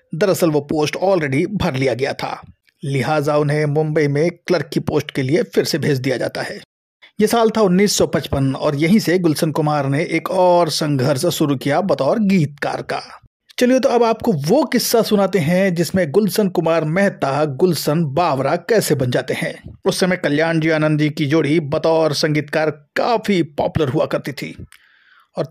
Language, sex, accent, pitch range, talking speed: Hindi, male, native, 145-180 Hz, 175 wpm